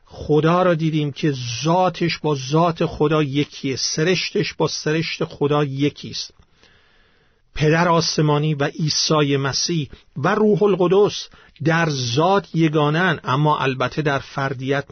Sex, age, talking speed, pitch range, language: male, 50-69, 115 wpm, 140-175 Hz, Persian